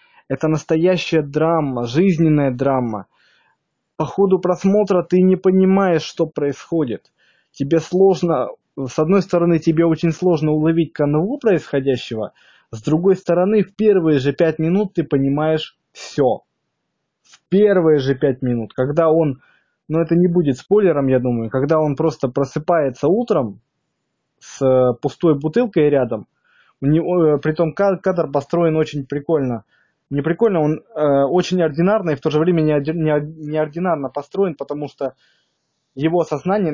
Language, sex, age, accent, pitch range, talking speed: Russian, male, 20-39, native, 135-170 Hz, 135 wpm